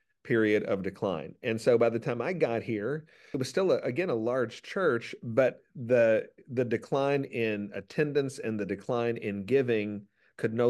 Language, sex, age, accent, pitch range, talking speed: English, male, 40-59, American, 100-120 Hz, 180 wpm